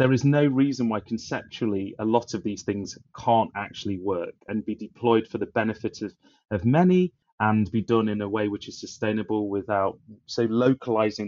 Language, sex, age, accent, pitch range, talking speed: English, male, 30-49, British, 105-125 Hz, 185 wpm